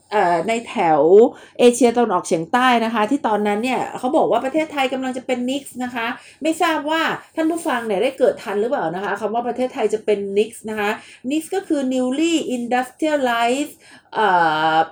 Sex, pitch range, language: female, 210-275 Hz, Thai